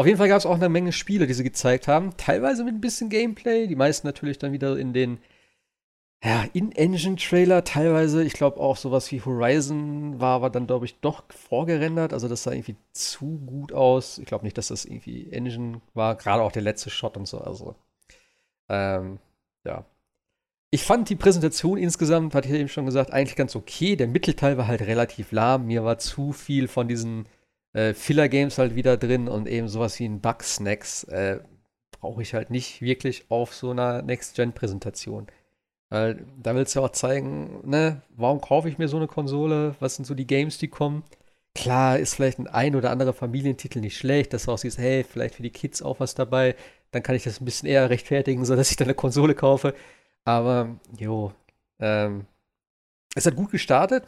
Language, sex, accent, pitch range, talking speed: German, male, German, 120-150 Hz, 200 wpm